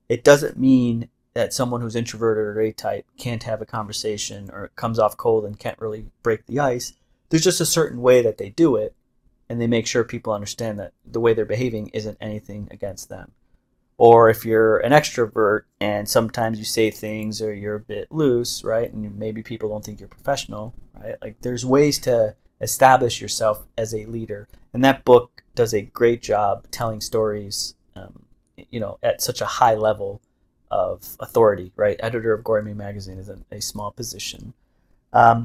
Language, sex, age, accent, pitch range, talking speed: English, male, 30-49, American, 105-120 Hz, 185 wpm